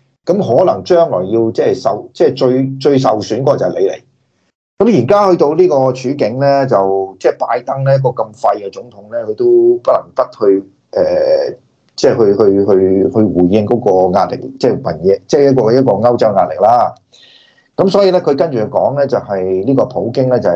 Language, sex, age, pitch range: Chinese, male, 30-49, 120-175 Hz